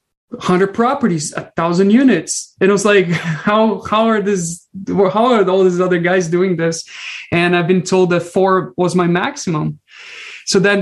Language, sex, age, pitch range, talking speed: English, male, 20-39, 165-195 Hz, 175 wpm